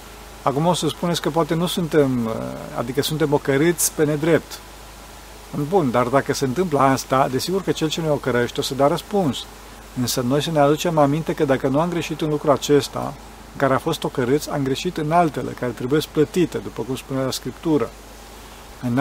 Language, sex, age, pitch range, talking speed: Romanian, male, 40-59, 135-165 Hz, 190 wpm